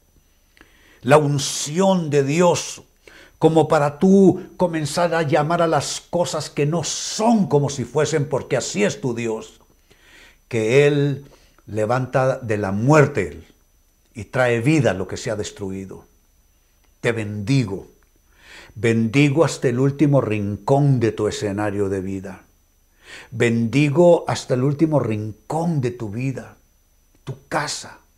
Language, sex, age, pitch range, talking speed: Spanish, male, 60-79, 100-145 Hz, 130 wpm